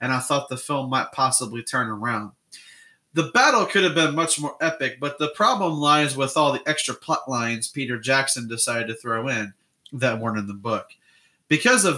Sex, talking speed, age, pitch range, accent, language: male, 200 wpm, 30-49, 120-150 Hz, American, English